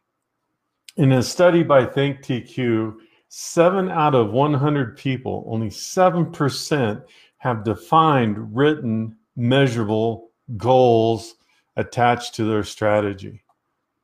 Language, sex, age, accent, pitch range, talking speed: English, male, 50-69, American, 110-145 Hz, 90 wpm